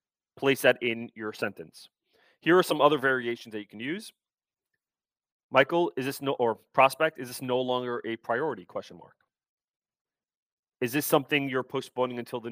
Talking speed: 170 wpm